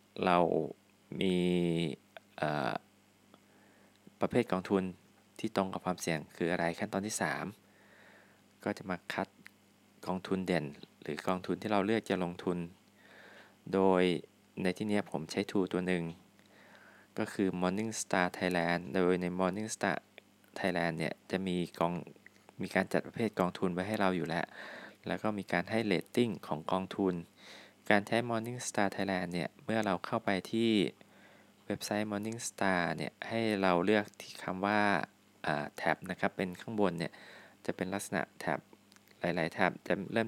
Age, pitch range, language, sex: 20-39, 90-105 Hz, Thai, male